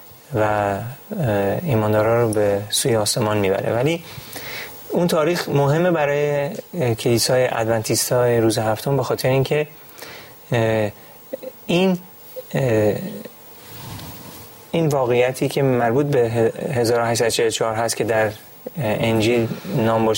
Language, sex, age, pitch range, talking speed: Persian, male, 30-49, 115-145 Hz, 90 wpm